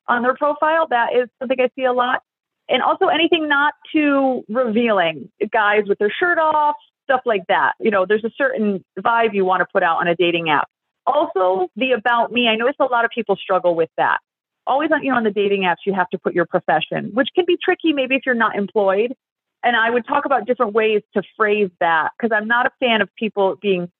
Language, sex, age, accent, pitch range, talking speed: English, female, 30-49, American, 195-275 Hz, 235 wpm